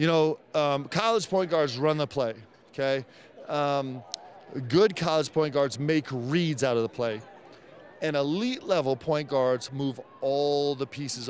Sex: male